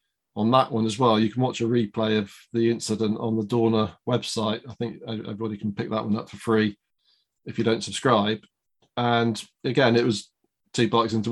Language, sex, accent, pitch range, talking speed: English, male, British, 115-125 Hz, 200 wpm